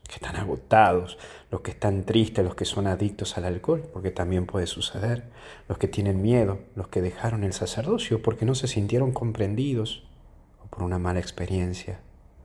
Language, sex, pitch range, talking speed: Spanish, male, 90-115 Hz, 175 wpm